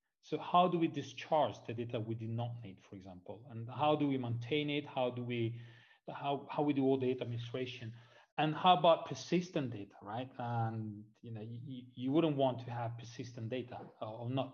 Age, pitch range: 40-59, 120-150 Hz